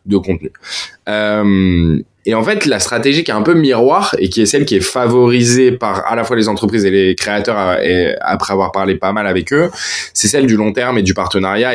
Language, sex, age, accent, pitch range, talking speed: French, male, 20-39, French, 95-125 Hz, 230 wpm